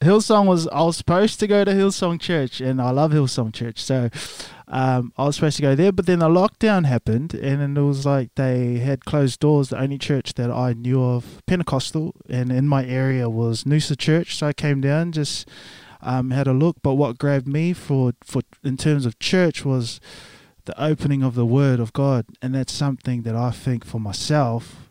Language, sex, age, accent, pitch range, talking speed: English, male, 20-39, Australian, 125-155 Hz, 210 wpm